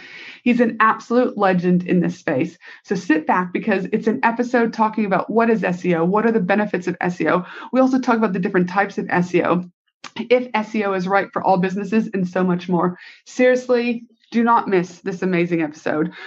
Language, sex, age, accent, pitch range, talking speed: English, female, 30-49, American, 190-235 Hz, 190 wpm